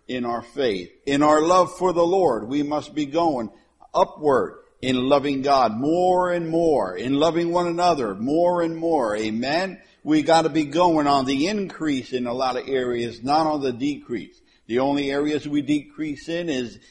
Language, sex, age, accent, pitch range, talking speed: English, male, 60-79, American, 135-180 Hz, 180 wpm